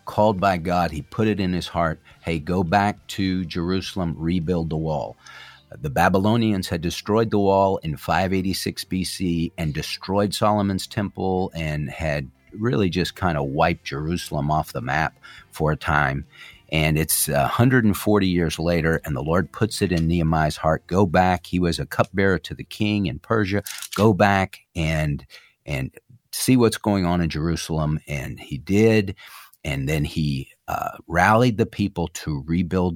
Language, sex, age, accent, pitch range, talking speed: English, male, 50-69, American, 80-100 Hz, 165 wpm